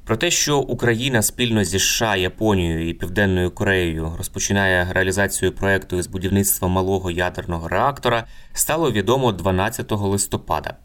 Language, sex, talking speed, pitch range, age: Ukrainian, male, 125 wpm, 95-115 Hz, 20-39